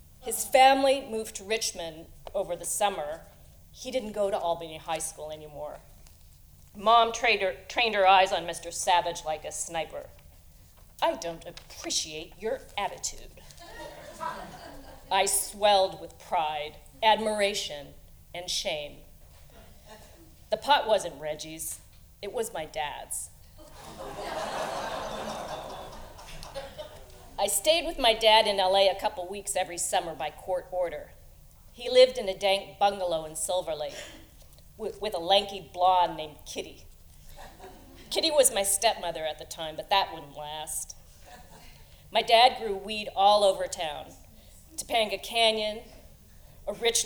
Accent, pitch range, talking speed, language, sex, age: American, 160-220 Hz, 125 wpm, English, female, 40-59